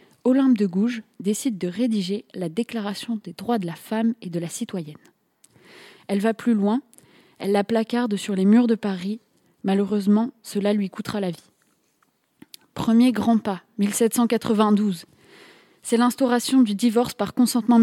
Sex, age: female, 20-39